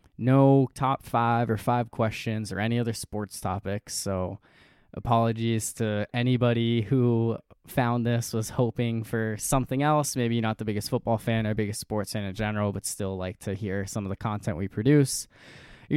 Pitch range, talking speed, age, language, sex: 100-125 Hz, 175 wpm, 20-39, English, male